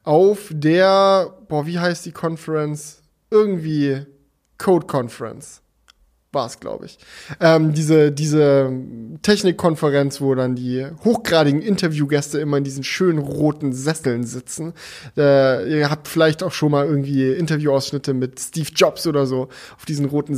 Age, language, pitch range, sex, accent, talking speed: 10-29, German, 145-195 Hz, male, German, 140 wpm